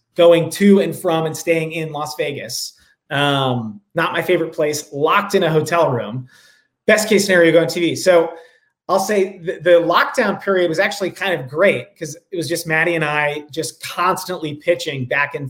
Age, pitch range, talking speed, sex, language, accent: 30-49, 150-180 Hz, 185 wpm, male, English, American